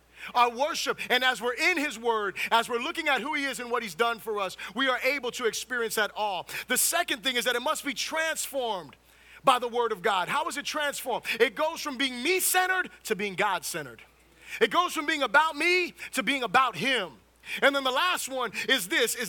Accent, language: American, English